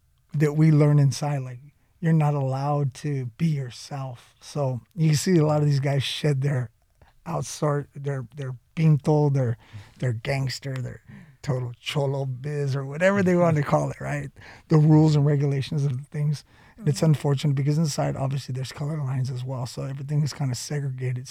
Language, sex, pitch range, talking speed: English, male, 130-150 Hz, 185 wpm